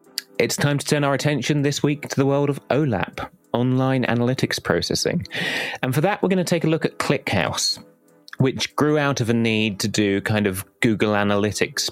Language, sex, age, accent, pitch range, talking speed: English, male, 30-49, British, 100-135 Hz, 195 wpm